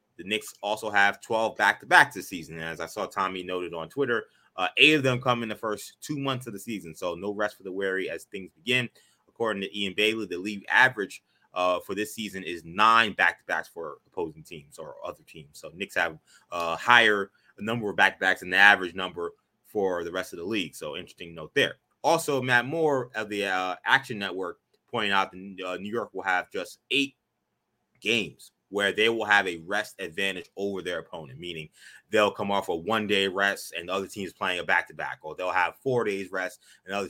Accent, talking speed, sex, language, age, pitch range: American, 215 wpm, male, English, 20-39, 95-120 Hz